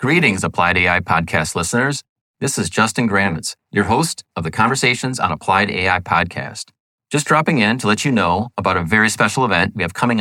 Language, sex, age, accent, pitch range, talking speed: English, male, 30-49, American, 90-120 Hz, 195 wpm